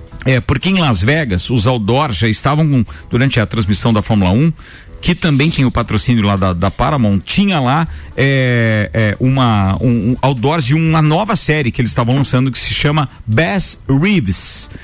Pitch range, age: 115-175 Hz, 50-69